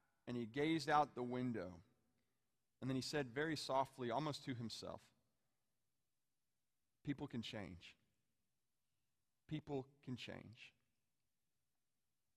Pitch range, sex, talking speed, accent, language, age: 120-150 Hz, male, 100 wpm, American, English, 40-59